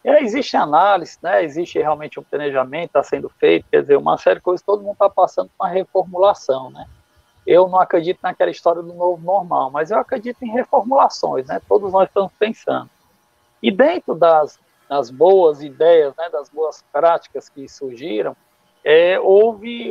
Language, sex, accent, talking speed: Portuguese, male, Brazilian, 170 wpm